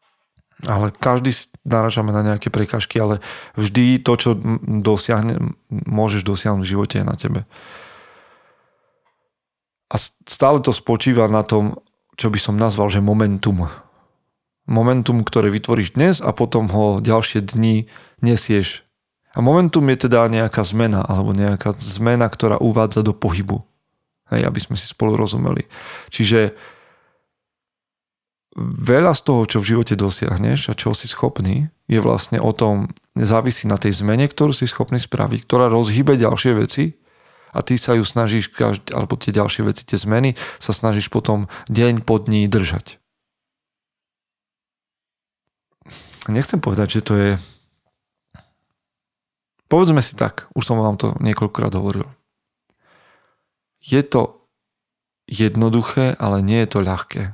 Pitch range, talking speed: 105-125 Hz, 135 wpm